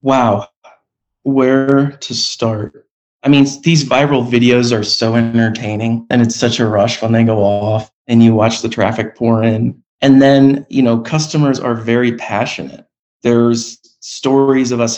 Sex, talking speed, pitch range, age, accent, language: male, 160 wpm, 105-125 Hz, 30-49, American, English